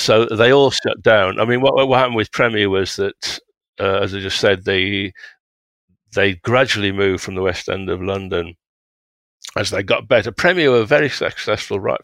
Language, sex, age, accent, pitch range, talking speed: English, male, 50-69, British, 90-100 Hz, 190 wpm